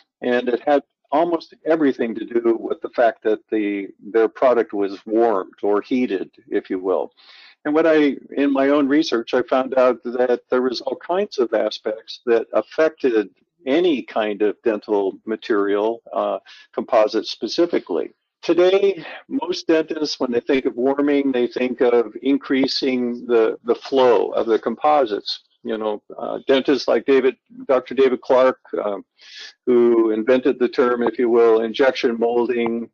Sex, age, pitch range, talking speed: male, 50-69, 115-160 Hz, 155 wpm